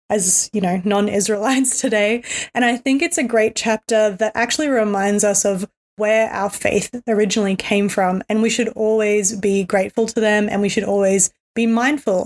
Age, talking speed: 20-39, 180 wpm